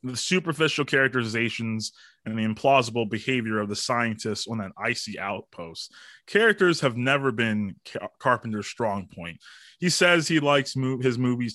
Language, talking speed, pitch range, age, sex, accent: English, 150 wpm, 110-145 Hz, 20-39, male, American